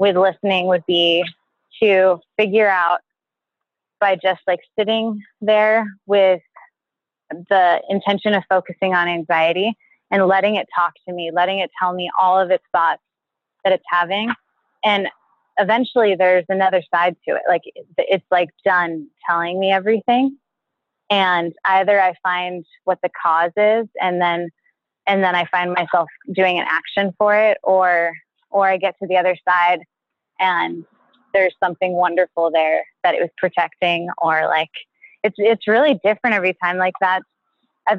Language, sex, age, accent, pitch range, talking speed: English, female, 20-39, American, 180-210 Hz, 155 wpm